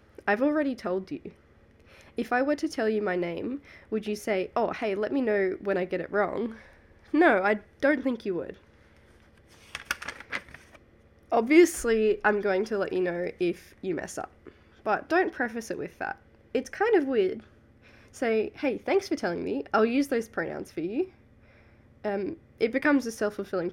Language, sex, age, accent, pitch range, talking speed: English, female, 10-29, Australian, 175-225 Hz, 175 wpm